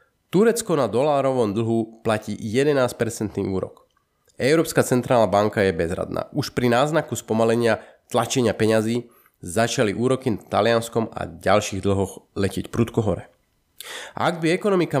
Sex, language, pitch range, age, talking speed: male, Slovak, 105-130 Hz, 30-49, 130 wpm